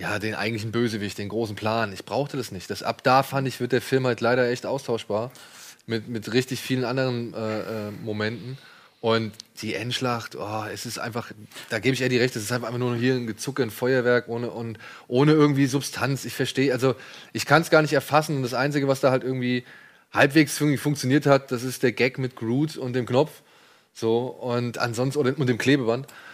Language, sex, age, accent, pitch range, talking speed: German, male, 20-39, German, 115-135 Hz, 210 wpm